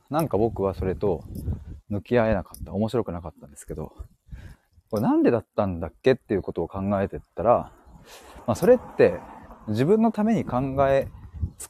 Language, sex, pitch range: Japanese, male, 95-155 Hz